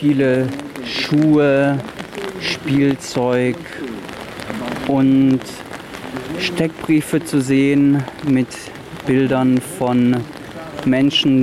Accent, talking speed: German, 60 wpm